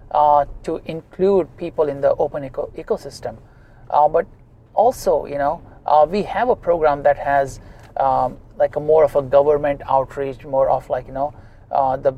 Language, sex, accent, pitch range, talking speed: English, male, Indian, 135-160 Hz, 170 wpm